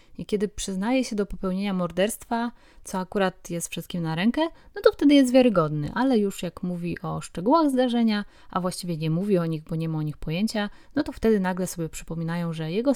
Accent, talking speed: native, 210 wpm